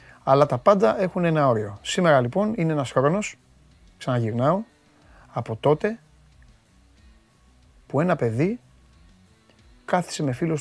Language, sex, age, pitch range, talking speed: Greek, male, 30-49, 100-145 Hz, 115 wpm